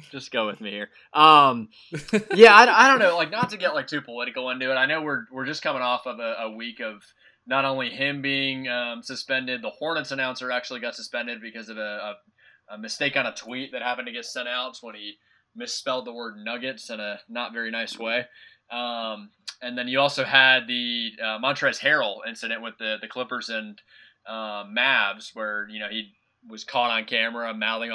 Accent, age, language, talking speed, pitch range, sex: American, 20-39, English, 210 wpm, 110-135 Hz, male